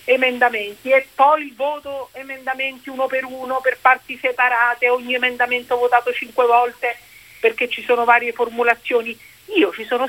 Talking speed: 145 wpm